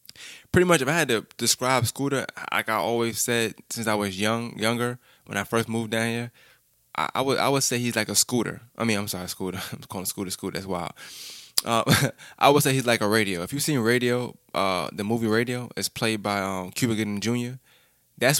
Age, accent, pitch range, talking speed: 20-39, American, 100-120 Hz, 225 wpm